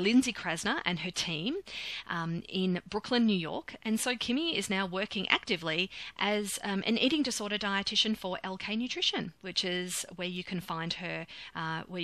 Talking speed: 175 wpm